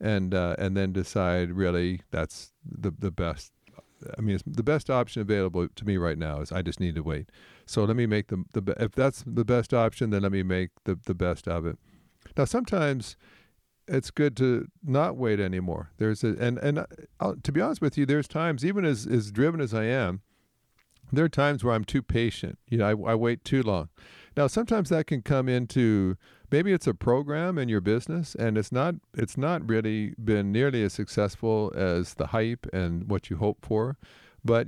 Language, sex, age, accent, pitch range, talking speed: English, male, 50-69, American, 95-125 Hz, 210 wpm